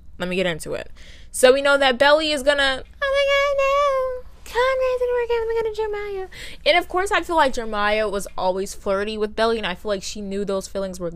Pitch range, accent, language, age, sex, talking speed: 185-280 Hz, American, English, 20-39, female, 245 wpm